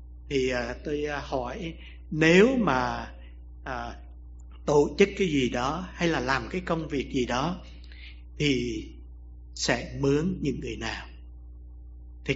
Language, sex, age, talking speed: English, male, 60-79, 120 wpm